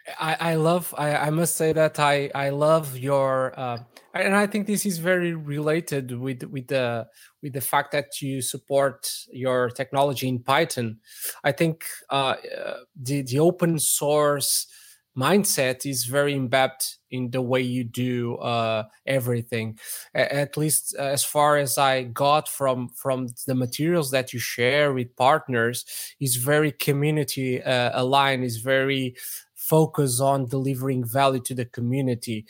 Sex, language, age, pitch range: male, English, 20-39, 125-145 Hz